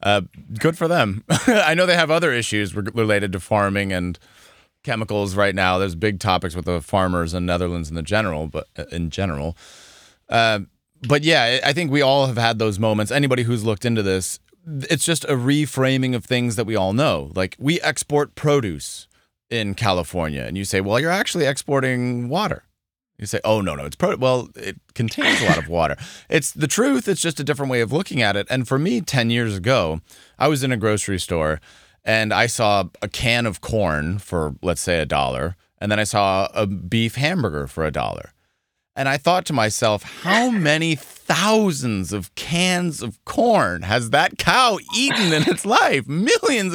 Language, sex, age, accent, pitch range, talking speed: English, male, 30-49, American, 95-145 Hz, 195 wpm